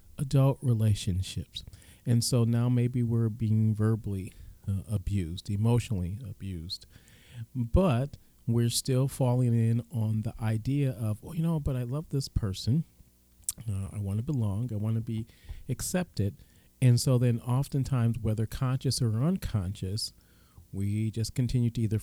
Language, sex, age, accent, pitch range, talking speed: English, male, 40-59, American, 95-120 Hz, 140 wpm